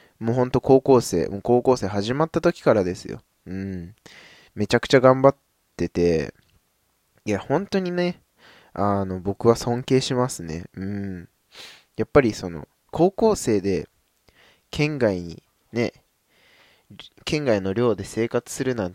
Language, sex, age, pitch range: Japanese, male, 20-39, 95-125 Hz